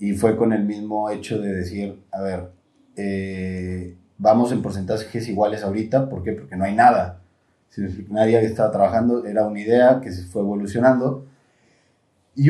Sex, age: male, 30-49